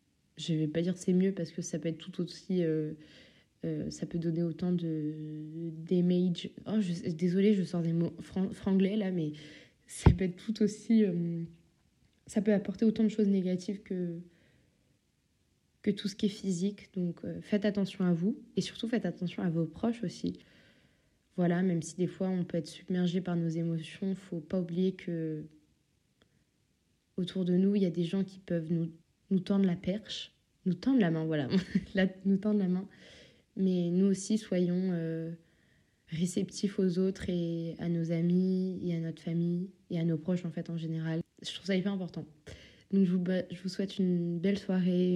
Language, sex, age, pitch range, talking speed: French, female, 20-39, 170-195 Hz, 190 wpm